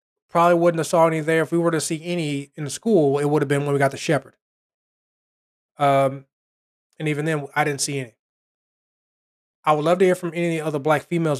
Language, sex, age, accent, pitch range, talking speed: English, male, 20-39, American, 145-165 Hz, 220 wpm